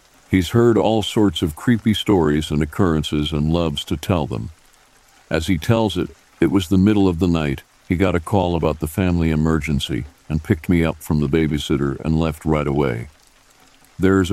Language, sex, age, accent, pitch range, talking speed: English, male, 50-69, American, 75-95 Hz, 190 wpm